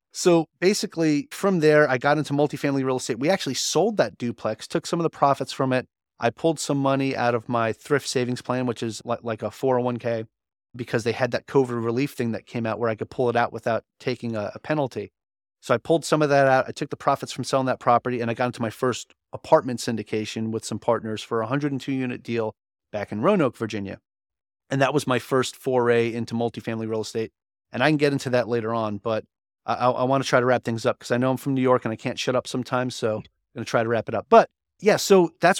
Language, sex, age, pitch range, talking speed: English, male, 30-49, 115-145 Hz, 245 wpm